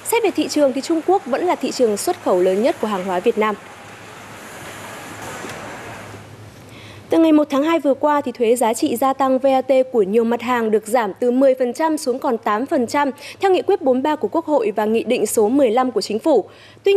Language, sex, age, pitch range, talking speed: Vietnamese, female, 20-39, 235-315 Hz, 215 wpm